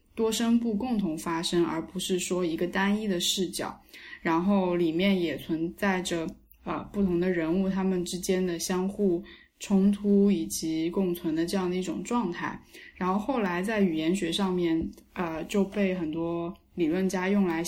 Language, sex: Chinese, female